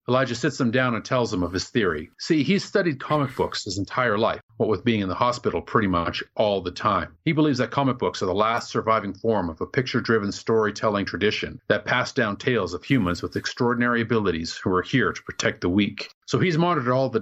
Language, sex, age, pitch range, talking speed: English, male, 40-59, 105-140 Hz, 225 wpm